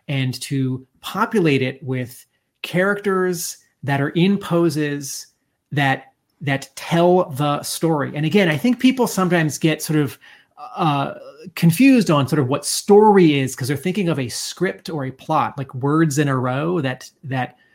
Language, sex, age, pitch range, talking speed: English, male, 30-49, 135-180 Hz, 160 wpm